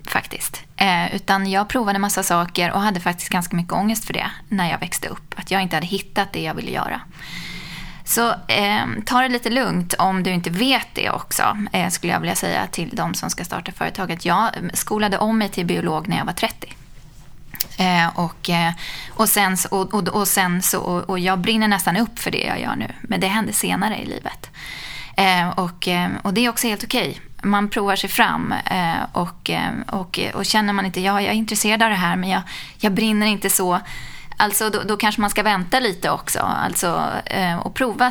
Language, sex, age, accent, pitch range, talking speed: Swedish, female, 20-39, native, 180-215 Hz, 180 wpm